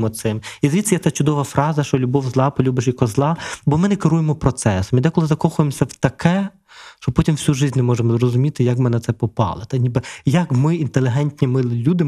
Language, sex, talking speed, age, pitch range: Ukrainian, male, 210 wpm, 20-39, 125-155 Hz